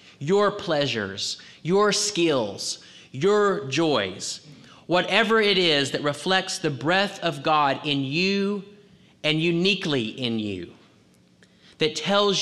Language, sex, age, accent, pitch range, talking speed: English, male, 30-49, American, 105-170 Hz, 110 wpm